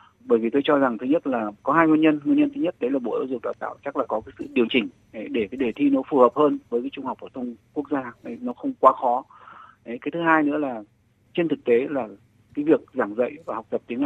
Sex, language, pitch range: male, Vietnamese, 115-170 Hz